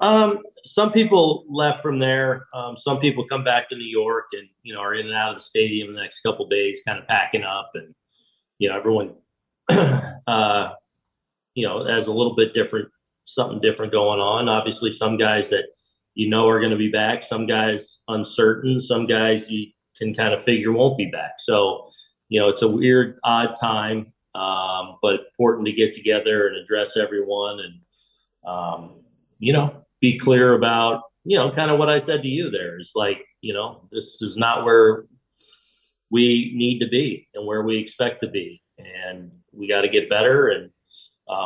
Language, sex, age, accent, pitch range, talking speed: English, male, 40-59, American, 105-135 Hz, 190 wpm